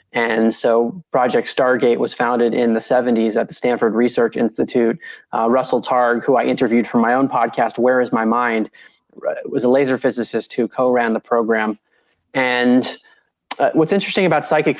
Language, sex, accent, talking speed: English, male, American, 170 wpm